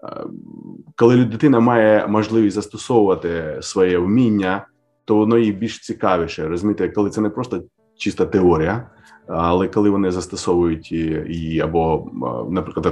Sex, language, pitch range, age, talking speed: male, Ukrainian, 90-115 Hz, 30-49, 120 wpm